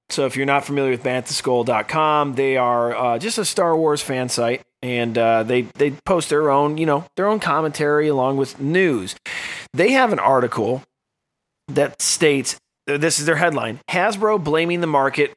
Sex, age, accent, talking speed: male, 30-49, American, 175 wpm